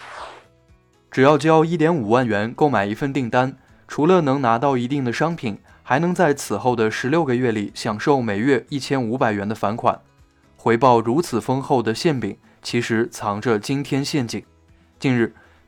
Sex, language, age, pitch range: male, Chinese, 20-39, 105-140 Hz